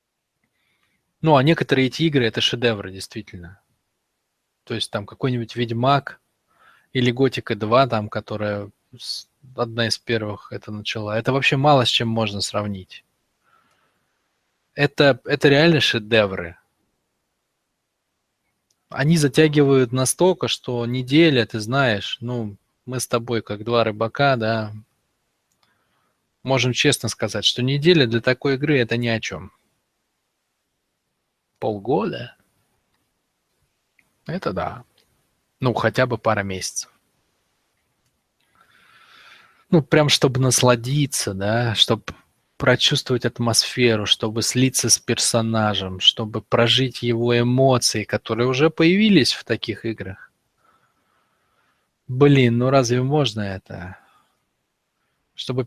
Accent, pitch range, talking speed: native, 110-135 Hz, 105 wpm